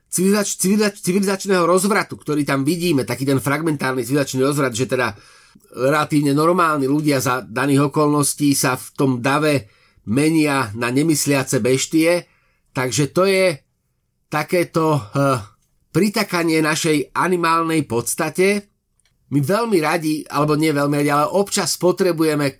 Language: Slovak